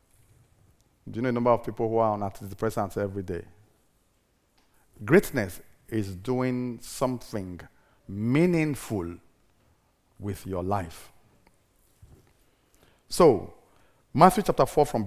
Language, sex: English, male